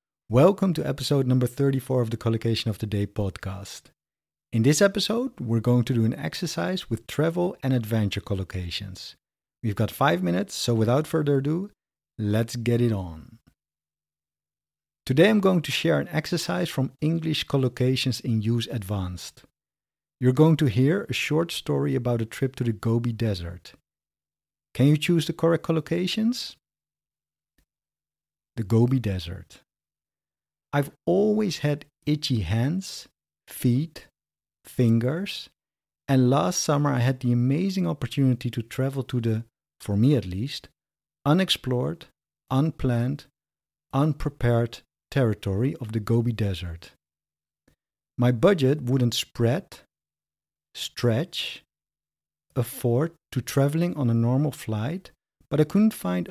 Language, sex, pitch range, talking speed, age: English, male, 100-145 Hz, 130 wpm, 50-69